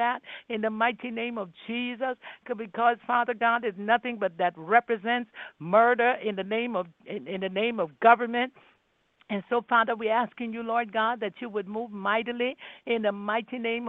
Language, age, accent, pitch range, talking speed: English, 60-79, American, 210-235 Hz, 180 wpm